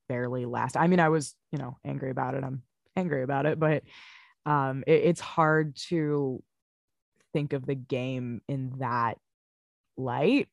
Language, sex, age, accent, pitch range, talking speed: English, female, 20-39, American, 130-165 Hz, 155 wpm